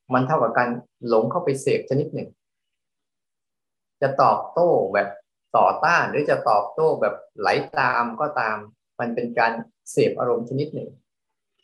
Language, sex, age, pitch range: Thai, male, 20-39, 120-145 Hz